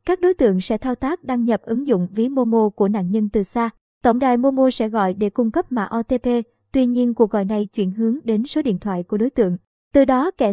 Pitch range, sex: 215-265 Hz, male